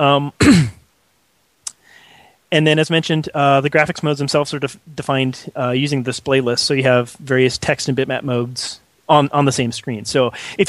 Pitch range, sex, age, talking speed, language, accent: 120-150 Hz, male, 30-49, 175 wpm, English, American